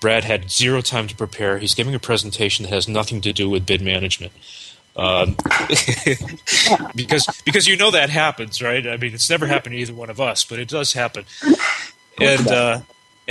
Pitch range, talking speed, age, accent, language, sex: 105-135 Hz, 190 wpm, 30-49, American, English, male